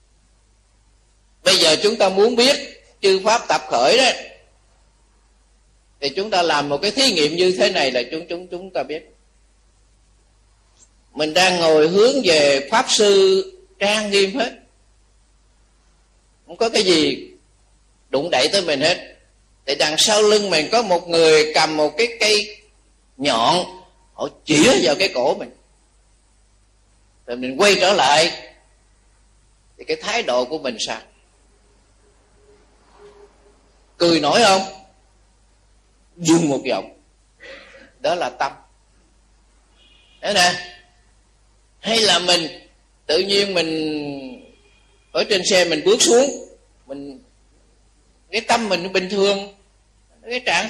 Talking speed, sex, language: 130 wpm, male, Vietnamese